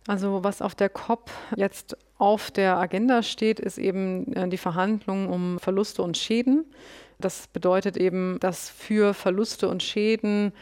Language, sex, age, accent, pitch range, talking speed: German, female, 30-49, German, 180-205 Hz, 145 wpm